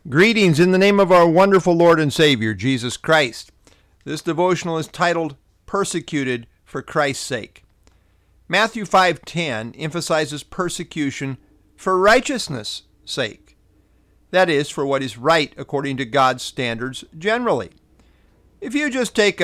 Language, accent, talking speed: English, American, 130 wpm